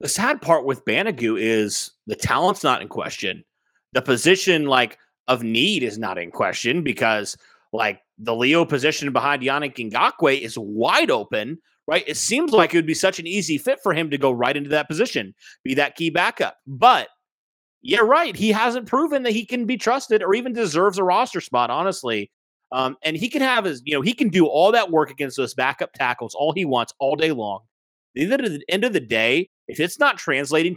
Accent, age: American, 30-49